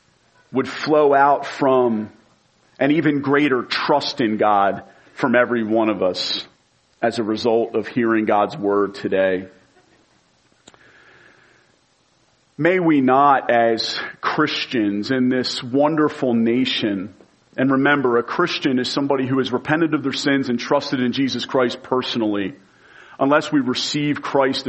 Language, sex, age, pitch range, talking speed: English, male, 40-59, 120-145 Hz, 130 wpm